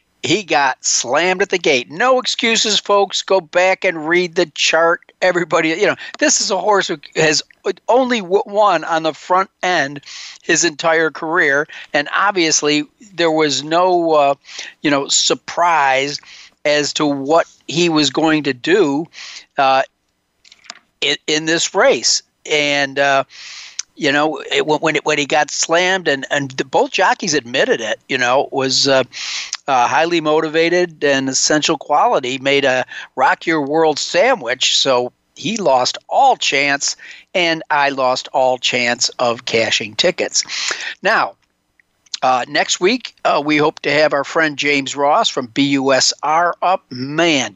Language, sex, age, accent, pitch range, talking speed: English, male, 50-69, American, 140-180 Hz, 150 wpm